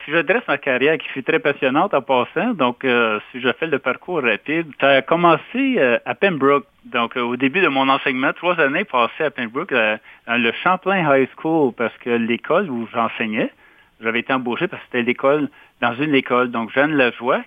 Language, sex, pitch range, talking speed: French, male, 120-150 Hz, 205 wpm